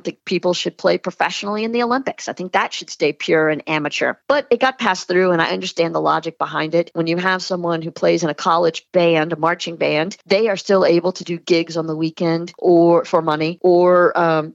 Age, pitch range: 40-59, 170-205 Hz